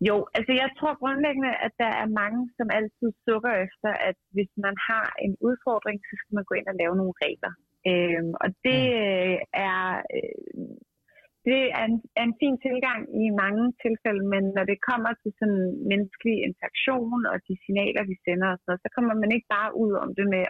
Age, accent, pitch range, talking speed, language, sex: 30-49, native, 185-235 Hz, 180 wpm, Danish, female